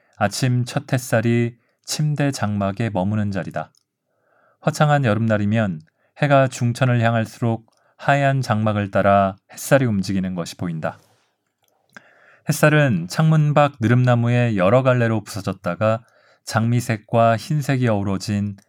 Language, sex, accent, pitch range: Korean, male, native, 100-125 Hz